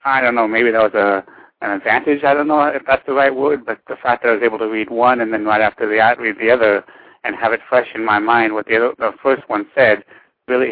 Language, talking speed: English, 285 wpm